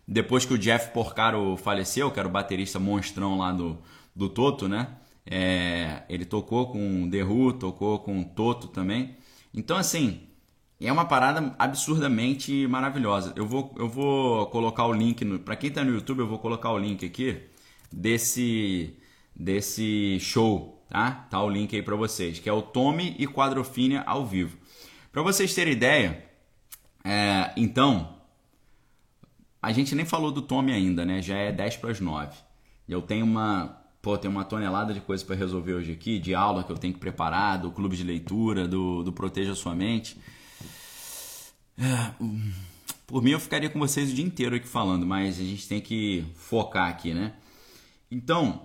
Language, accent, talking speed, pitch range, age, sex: Portuguese, Brazilian, 175 wpm, 95-130 Hz, 20-39, male